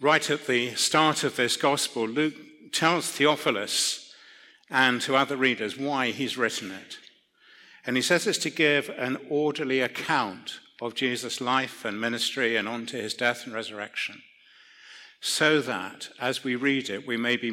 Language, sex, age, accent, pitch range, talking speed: English, male, 60-79, British, 115-140 Hz, 165 wpm